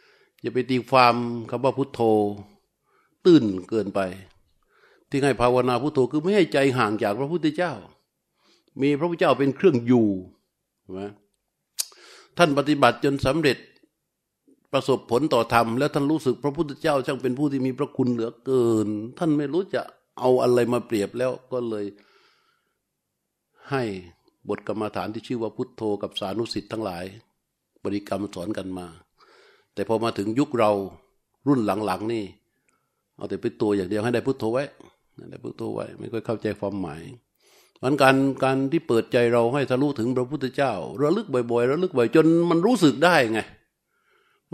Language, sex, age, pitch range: Thai, male, 60-79, 105-135 Hz